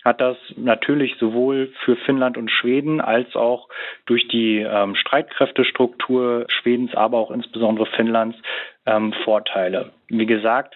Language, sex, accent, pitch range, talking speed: German, male, German, 110-125 Hz, 130 wpm